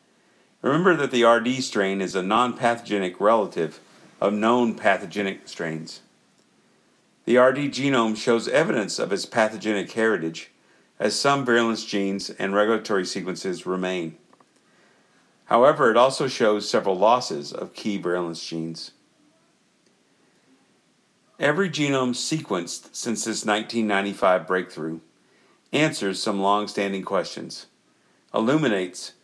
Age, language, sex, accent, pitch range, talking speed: 50-69, English, male, American, 95-125 Hz, 105 wpm